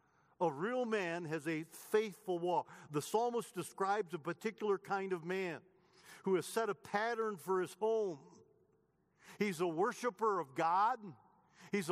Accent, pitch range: American, 170-215 Hz